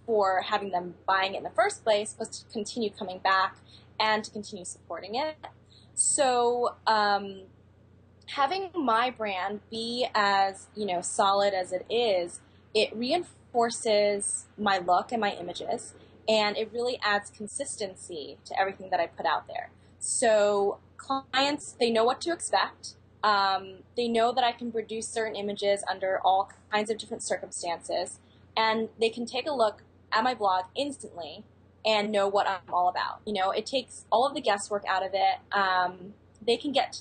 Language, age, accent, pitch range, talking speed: English, 20-39, American, 190-230 Hz, 170 wpm